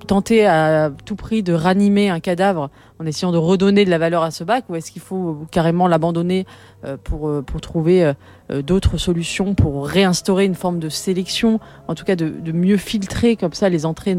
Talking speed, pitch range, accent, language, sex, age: 195 wpm, 155-190 Hz, French, French, female, 30-49